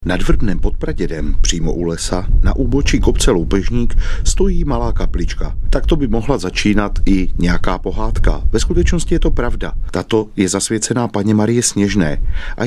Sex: male